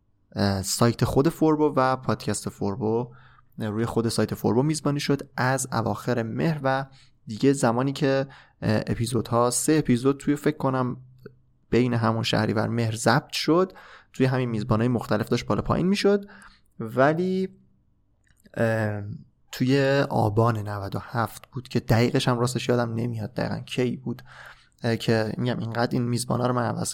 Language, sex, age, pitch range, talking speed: Persian, male, 20-39, 110-135 Hz, 145 wpm